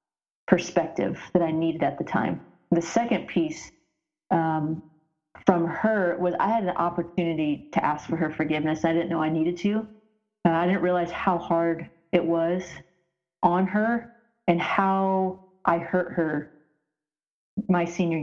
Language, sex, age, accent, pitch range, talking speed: English, female, 30-49, American, 160-180 Hz, 150 wpm